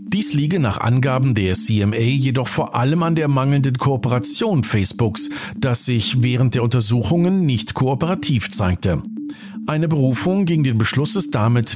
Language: German